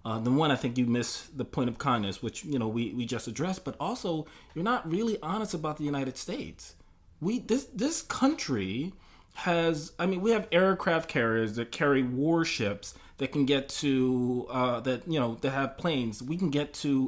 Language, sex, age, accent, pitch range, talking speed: English, male, 30-49, American, 110-155 Hz, 200 wpm